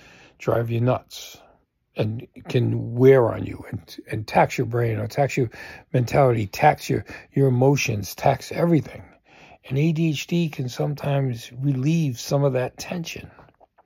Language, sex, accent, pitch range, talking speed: English, male, American, 115-155 Hz, 140 wpm